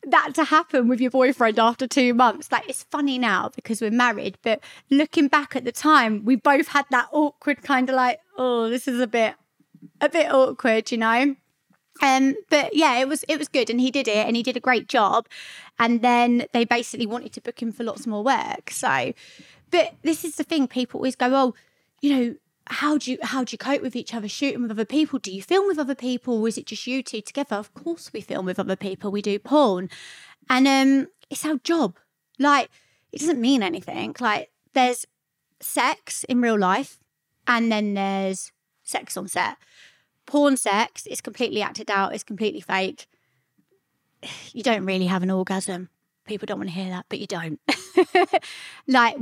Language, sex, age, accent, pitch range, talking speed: English, female, 20-39, British, 220-280 Hz, 200 wpm